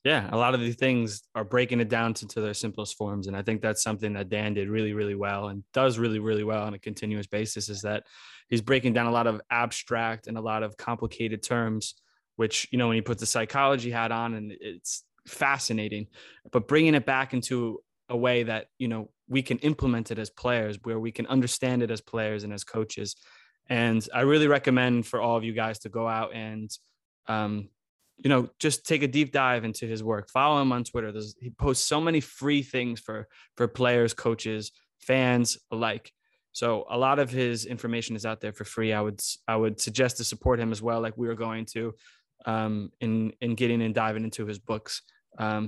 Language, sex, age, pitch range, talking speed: English, male, 20-39, 110-125 Hz, 215 wpm